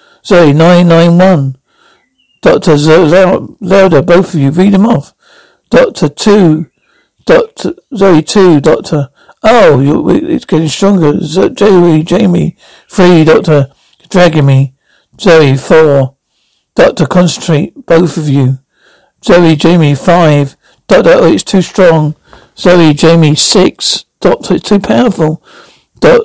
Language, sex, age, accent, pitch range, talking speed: English, male, 60-79, British, 155-190 Hz, 120 wpm